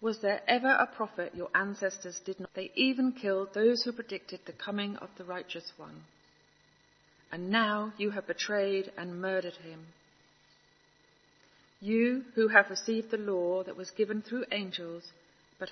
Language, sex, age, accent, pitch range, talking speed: English, female, 40-59, British, 165-205 Hz, 155 wpm